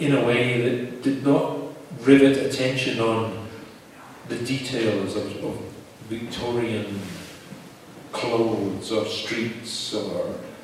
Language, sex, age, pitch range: German, male, 40-59, 105-125 Hz